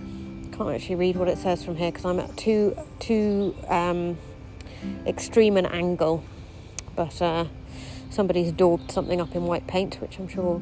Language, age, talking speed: English, 40-59, 175 wpm